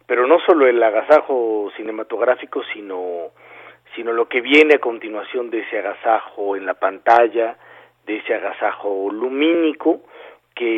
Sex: male